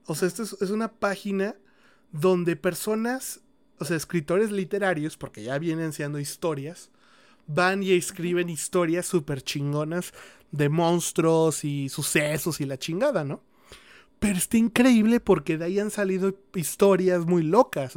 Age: 30-49